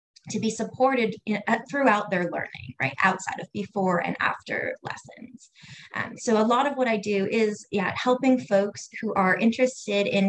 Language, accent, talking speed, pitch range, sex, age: English, American, 170 wpm, 185-235 Hz, female, 20-39